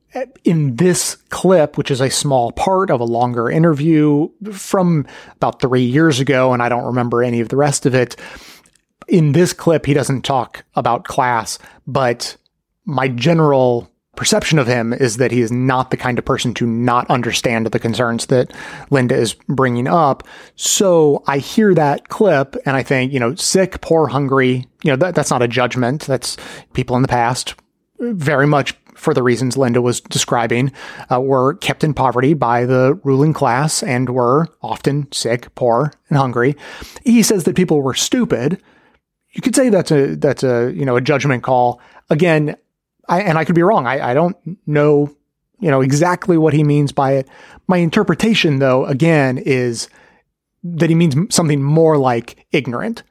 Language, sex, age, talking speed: English, male, 30-49, 175 wpm